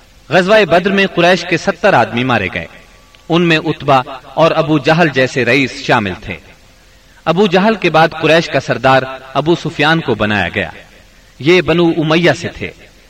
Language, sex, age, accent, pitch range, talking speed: English, male, 40-59, Indian, 120-165 Hz, 165 wpm